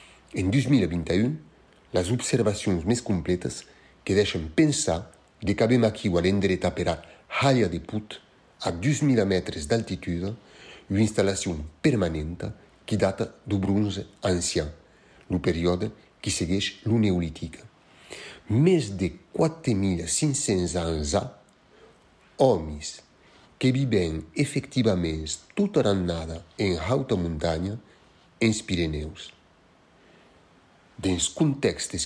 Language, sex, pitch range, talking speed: French, male, 85-115 Hz, 105 wpm